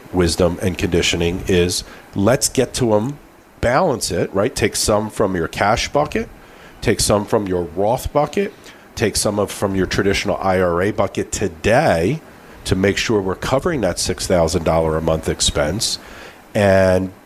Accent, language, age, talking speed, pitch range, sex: American, English, 50-69, 150 wpm, 90-115 Hz, male